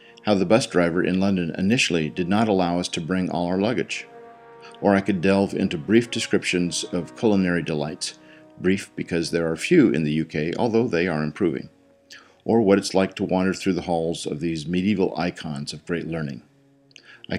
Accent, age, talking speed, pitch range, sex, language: American, 50-69, 190 wpm, 85-105 Hz, male, English